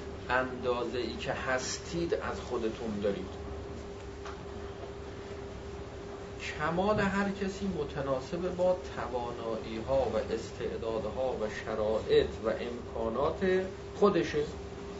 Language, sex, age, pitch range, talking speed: Persian, male, 40-59, 100-145 Hz, 90 wpm